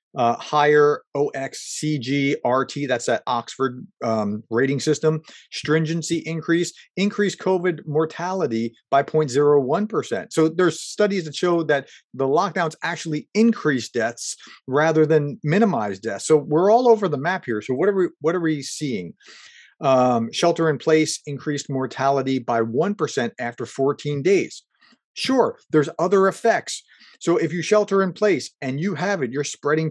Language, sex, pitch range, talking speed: English, male, 135-175 Hz, 140 wpm